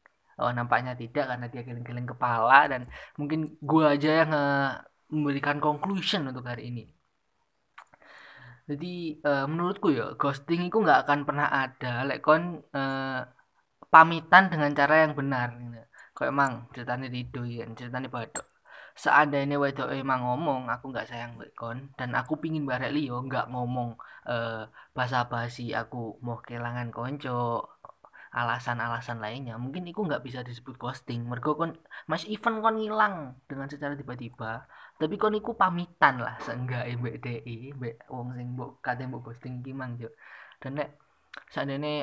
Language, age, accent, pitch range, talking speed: Indonesian, 20-39, native, 120-145 Hz, 125 wpm